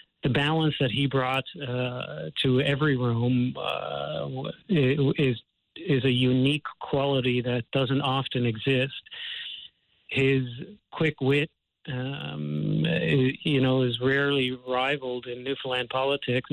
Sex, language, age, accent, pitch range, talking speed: male, English, 40-59, American, 125-140 Hz, 115 wpm